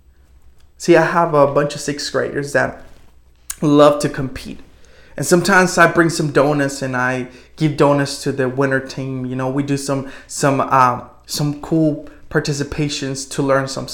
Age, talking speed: 20-39, 170 wpm